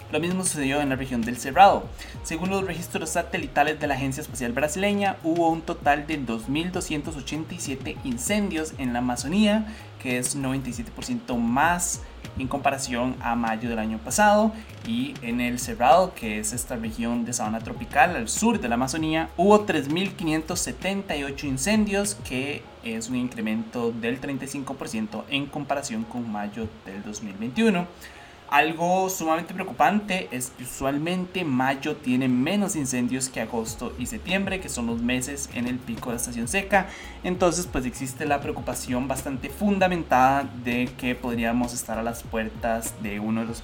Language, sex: Spanish, male